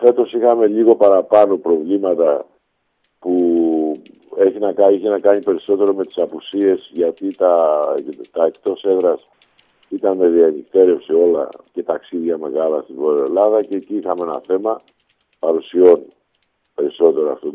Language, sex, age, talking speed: Greek, male, 50-69, 125 wpm